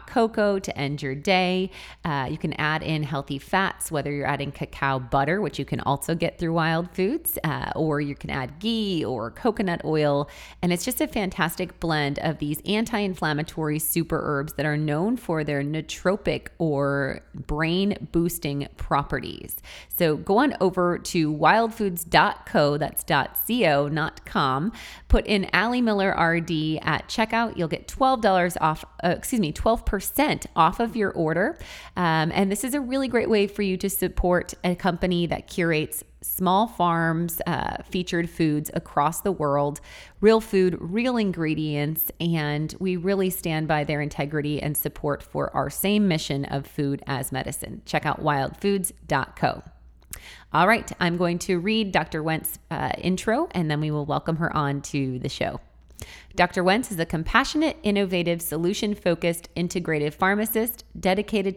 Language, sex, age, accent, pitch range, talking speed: English, female, 30-49, American, 150-195 Hz, 155 wpm